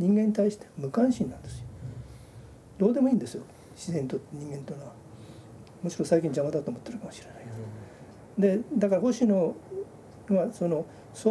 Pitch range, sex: 155-225 Hz, male